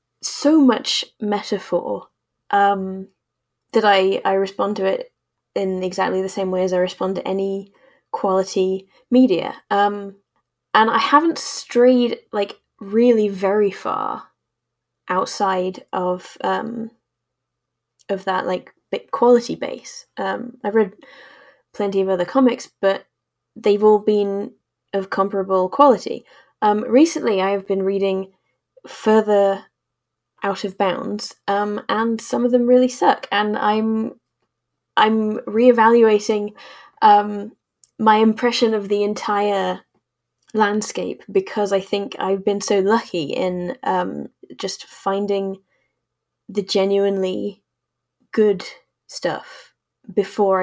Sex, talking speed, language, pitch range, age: female, 115 wpm, English, 190-225 Hz, 10-29